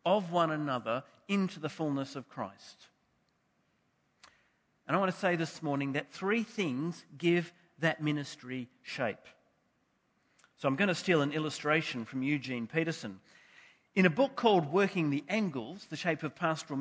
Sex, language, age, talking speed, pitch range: male, English, 40-59, 155 wpm, 135-175 Hz